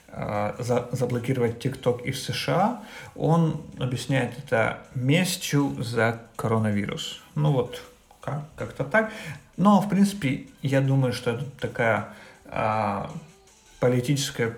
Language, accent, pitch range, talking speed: Ukrainian, native, 120-150 Hz, 100 wpm